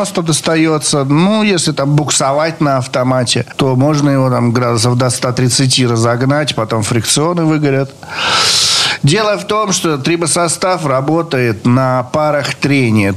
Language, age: Russian, 50-69